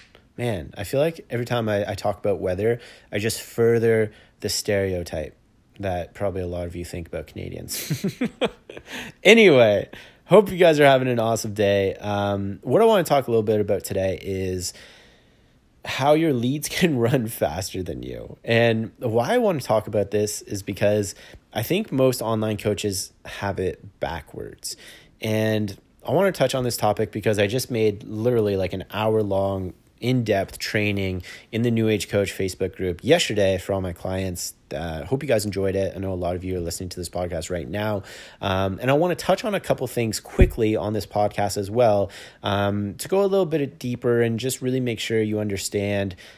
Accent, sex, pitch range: American, male, 95-125 Hz